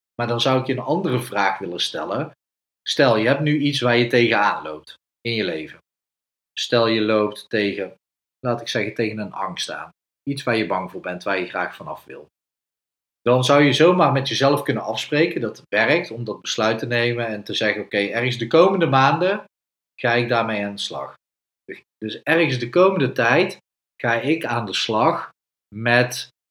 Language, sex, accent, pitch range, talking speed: Dutch, male, Dutch, 110-145 Hz, 190 wpm